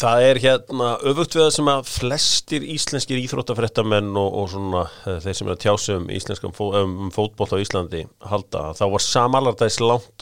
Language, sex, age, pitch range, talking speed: English, male, 40-59, 105-130 Hz, 170 wpm